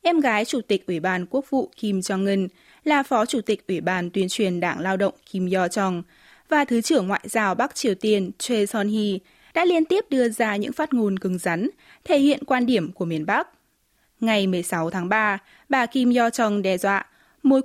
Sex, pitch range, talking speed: female, 185-255 Hz, 205 wpm